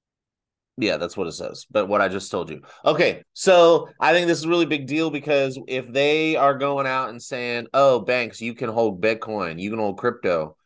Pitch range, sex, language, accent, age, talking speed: 95-125 Hz, male, English, American, 30-49, 220 wpm